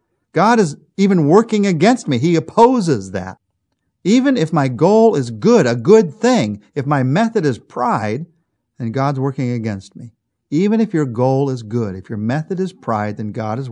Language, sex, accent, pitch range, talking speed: English, male, American, 125-190 Hz, 185 wpm